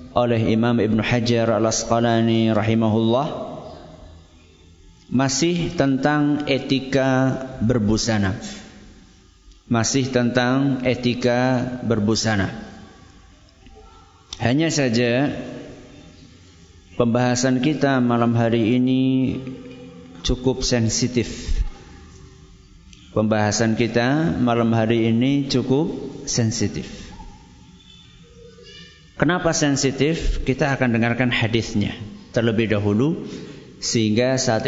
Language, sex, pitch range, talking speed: Malay, male, 110-135 Hz, 70 wpm